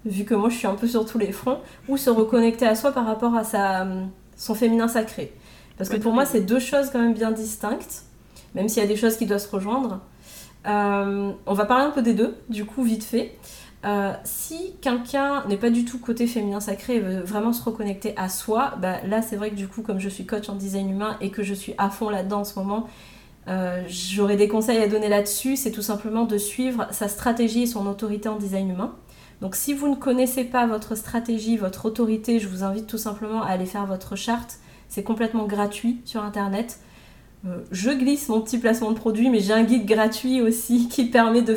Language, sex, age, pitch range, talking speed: French, female, 30-49, 205-235 Hz, 225 wpm